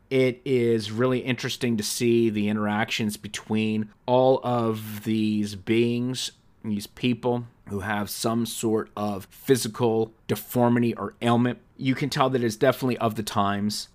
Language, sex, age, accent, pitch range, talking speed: English, male, 30-49, American, 100-120 Hz, 140 wpm